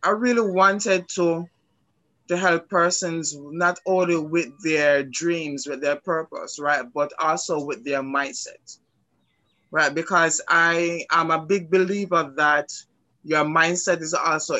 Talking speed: 135 wpm